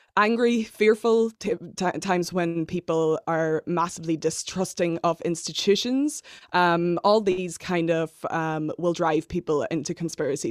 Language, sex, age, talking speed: English, female, 20-39, 130 wpm